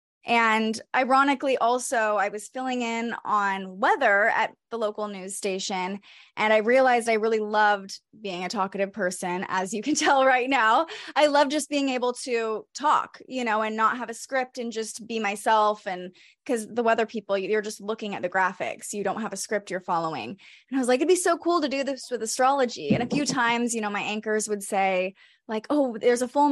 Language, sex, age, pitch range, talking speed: English, female, 20-39, 200-255 Hz, 215 wpm